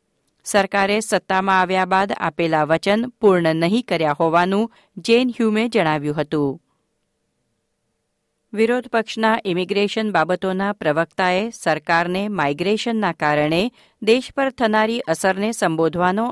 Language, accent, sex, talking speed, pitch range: Gujarati, native, female, 95 wpm, 165-220 Hz